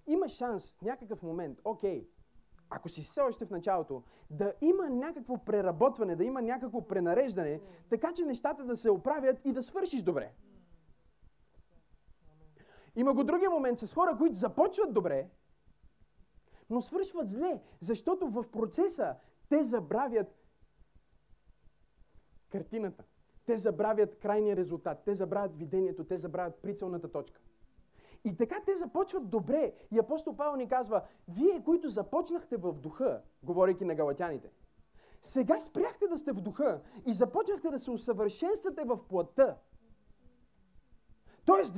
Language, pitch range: Bulgarian, 195-310 Hz